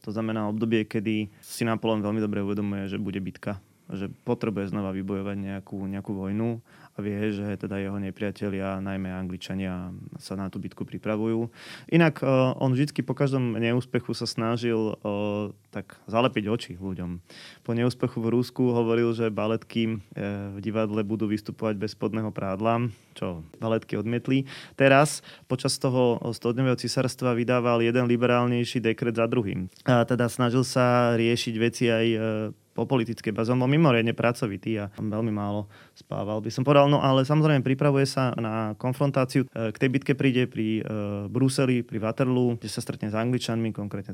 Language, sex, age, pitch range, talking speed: Slovak, male, 20-39, 100-120 Hz, 155 wpm